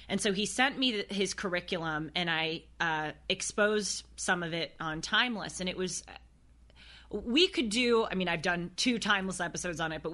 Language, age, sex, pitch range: English, 30-49, female, 160-200 Hz